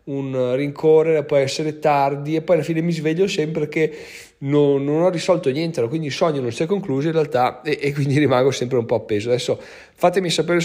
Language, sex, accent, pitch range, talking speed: Italian, male, native, 125-160 Hz, 220 wpm